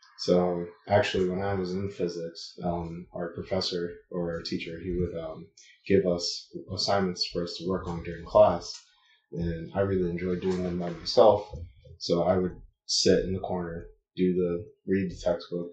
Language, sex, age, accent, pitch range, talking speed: English, male, 20-39, American, 90-100 Hz, 180 wpm